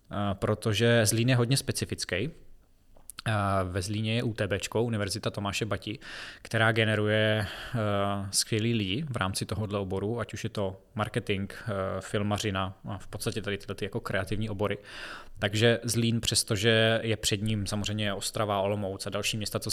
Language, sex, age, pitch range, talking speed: Czech, male, 20-39, 100-115 Hz, 145 wpm